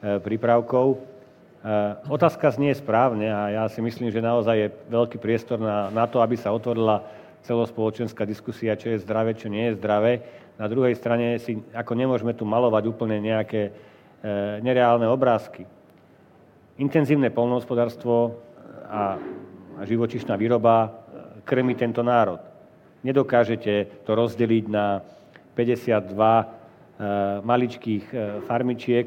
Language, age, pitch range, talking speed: Slovak, 40-59, 110-125 Hz, 110 wpm